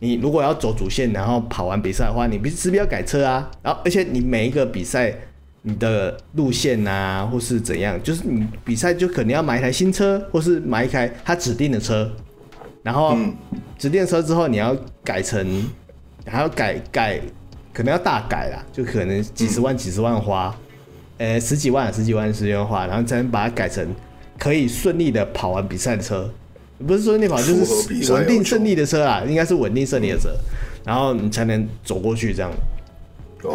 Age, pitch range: 30-49, 110-150 Hz